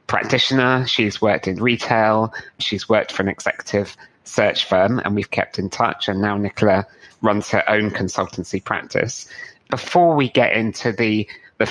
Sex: male